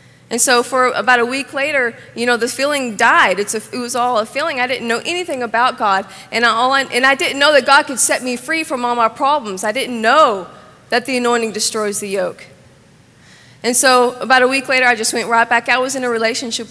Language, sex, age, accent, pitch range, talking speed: English, female, 20-39, American, 215-255 Hz, 225 wpm